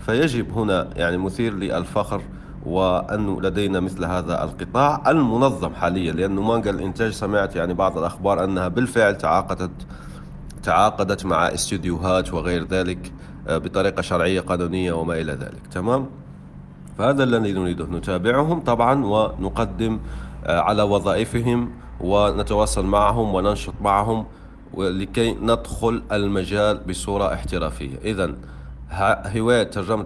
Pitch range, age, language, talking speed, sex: 90-110 Hz, 40-59, Arabic, 110 wpm, male